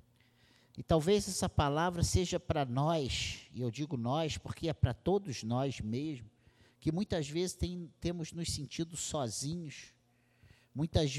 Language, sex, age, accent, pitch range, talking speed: Portuguese, male, 50-69, Brazilian, 120-155 Hz, 140 wpm